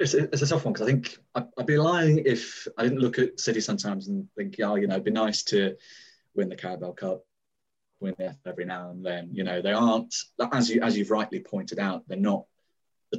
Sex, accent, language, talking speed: male, British, English, 220 wpm